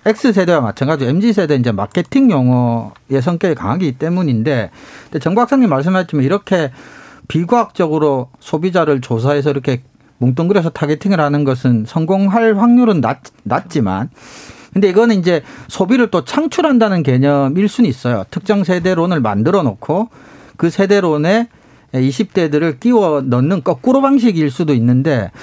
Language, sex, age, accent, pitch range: Korean, male, 40-59, native, 135-215 Hz